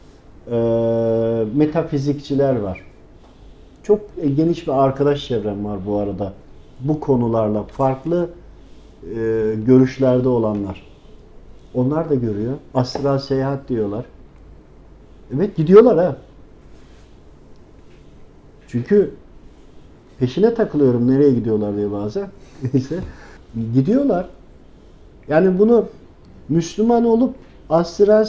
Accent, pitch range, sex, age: native, 115-170 Hz, male, 50-69